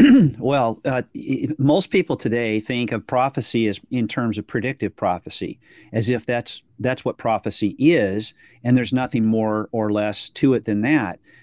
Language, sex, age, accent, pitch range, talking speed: English, male, 40-59, American, 110-135 Hz, 160 wpm